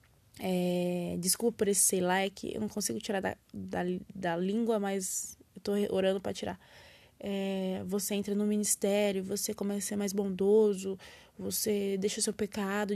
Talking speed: 160 wpm